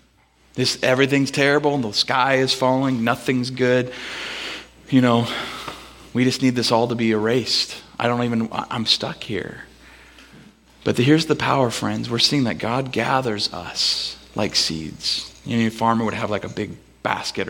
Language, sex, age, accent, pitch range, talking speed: English, male, 30-49, American, 115-155 Hz, 170 wpm